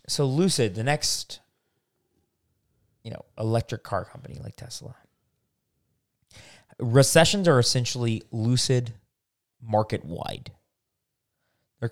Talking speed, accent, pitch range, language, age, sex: 85 wpm, American, 110-150 Hz, English, 20-39, male